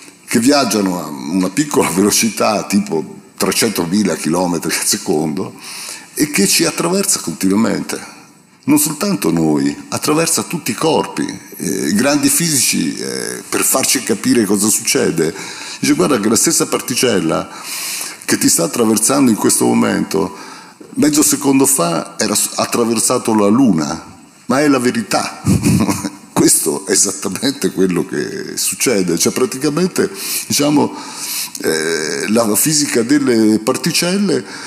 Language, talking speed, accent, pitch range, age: Italian, 125 wpm, native, 95-150 Hz, 50-69